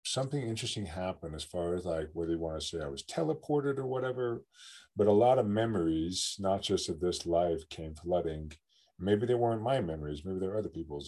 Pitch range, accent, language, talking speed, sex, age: 85-105 Hz, American, English, 205 wpm, male, 40-59